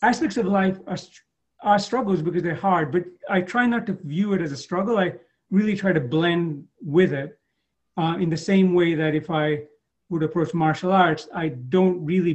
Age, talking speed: 40-59, 200 wpm